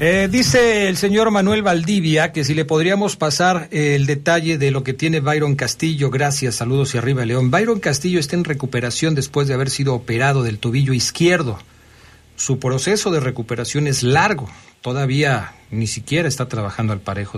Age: 50-69